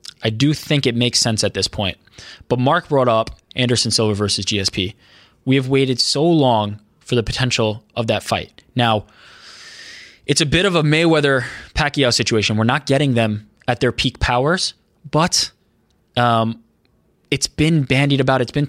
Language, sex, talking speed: English, male, 170 wpm